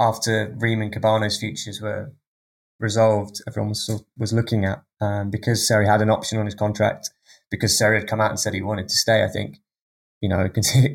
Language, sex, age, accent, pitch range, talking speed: English, male, 20-39, British, 105-120 Hz, 205 wpm